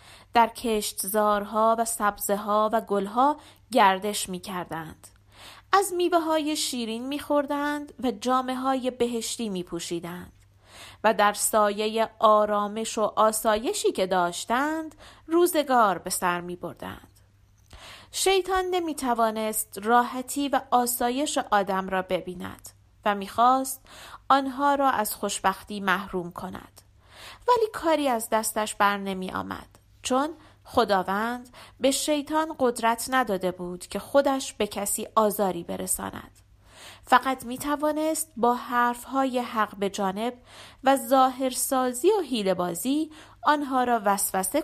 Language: Persian